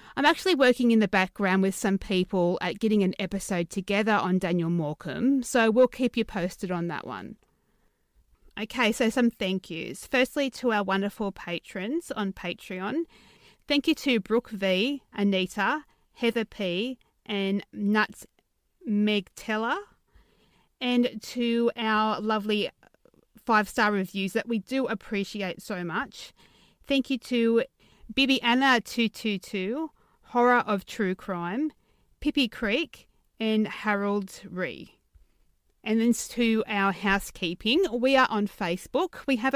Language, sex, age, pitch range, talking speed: English, female, 30-49, 195-240 Hz, 130 wpm